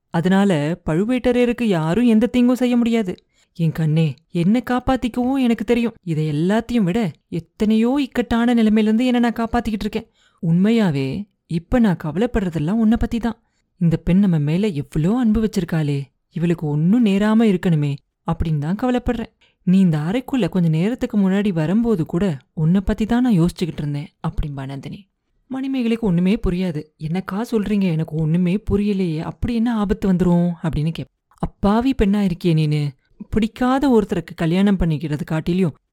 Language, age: Tamil, 30-49